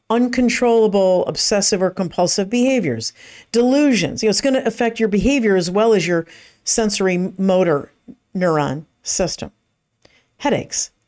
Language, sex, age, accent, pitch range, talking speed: English, female, 50-69, American, 155-225 Hz, 120 wpm